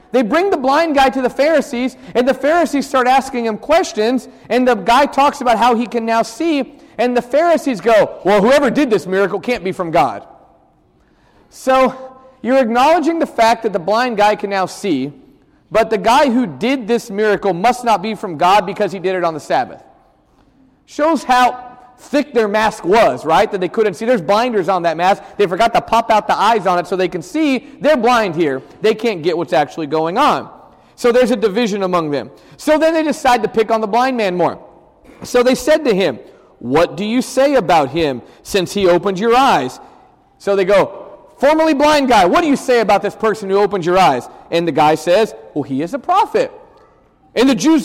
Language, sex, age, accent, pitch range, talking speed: English, male, 30-49, American, 200-265 Hz, 215 wpm